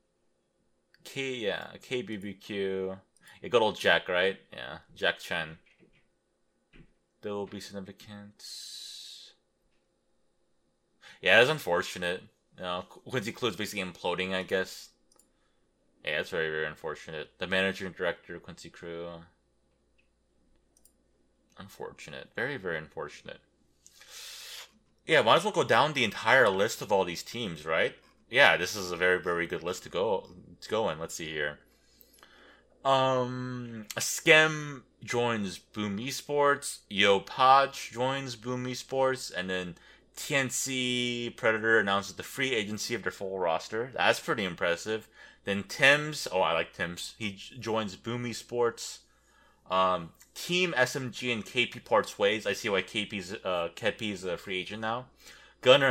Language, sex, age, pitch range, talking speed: English, male, 20-39, 95-125 Hz, 135 wpm